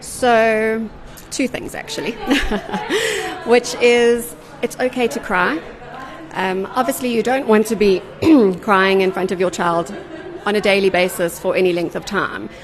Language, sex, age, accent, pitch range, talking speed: English, female, 30-49, British, 190-235 Hz, 150 wpm